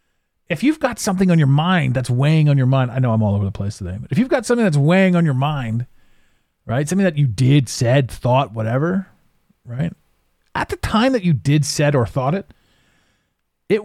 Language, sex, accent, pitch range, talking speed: English, male, American, 125-170 Hz, 215 wpm